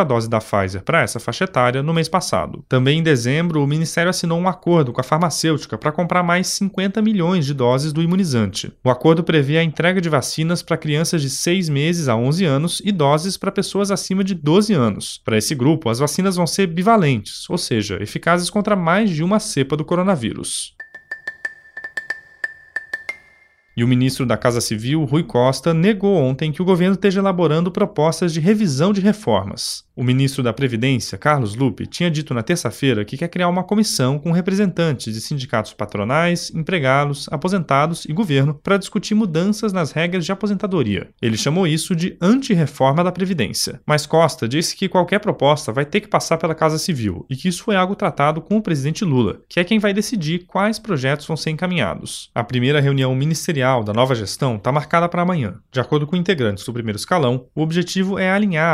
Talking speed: 190 wpm